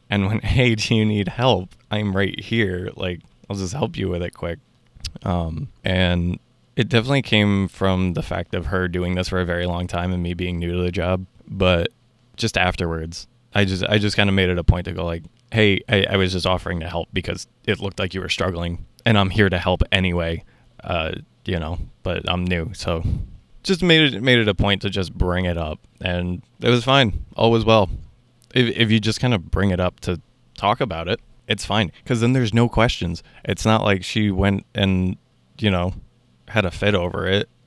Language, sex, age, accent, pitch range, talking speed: English, male, 20-39, American, 90-110 Hz, 220 wpm